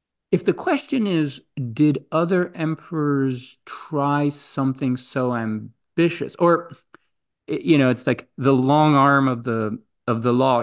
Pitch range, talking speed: 125-150 Hz, 135 wpm